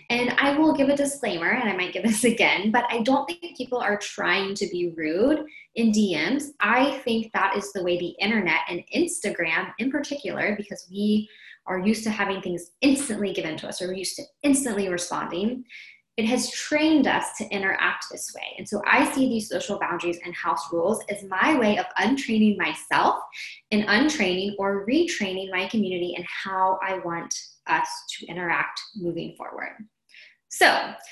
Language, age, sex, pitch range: English, 20-39, female, 185-245 Hz